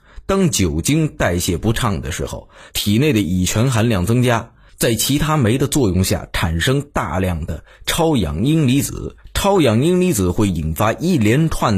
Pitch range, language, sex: 95-145 Hz, Chinese, male